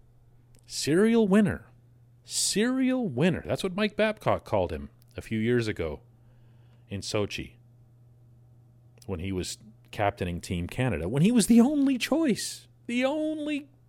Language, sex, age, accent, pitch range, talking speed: English, male, 40-59, American, 120-155 Hz, 130 wpm